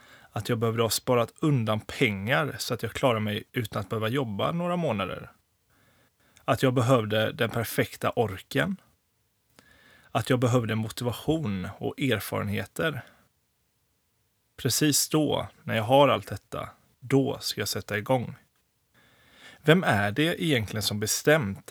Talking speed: 135 wpm